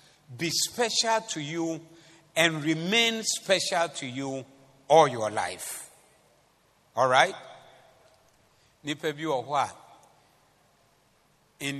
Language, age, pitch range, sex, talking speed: English, 60-79, 135-170 Hz, male, 75 wpm